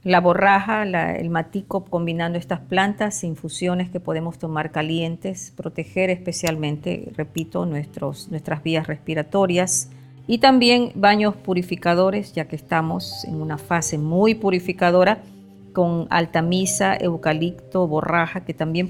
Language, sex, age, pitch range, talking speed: Spanish, female, 40-59, 160-190 Hz, 120 wpm